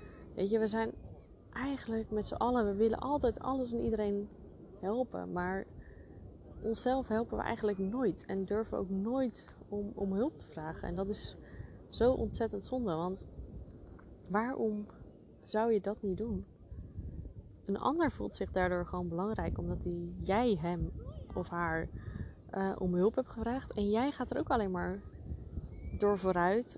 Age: 20-39